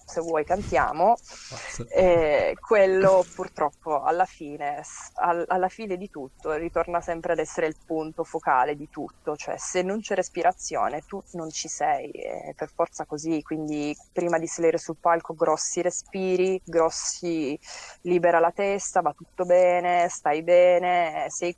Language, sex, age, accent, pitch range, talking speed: Italian, female, 20-39, native, 155-190 Hz, 145 wpm